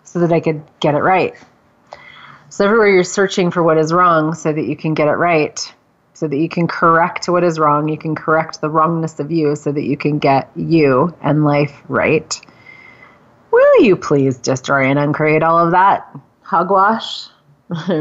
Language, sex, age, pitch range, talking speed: English, female, 30-49, 150-180 Hz, 185 wpm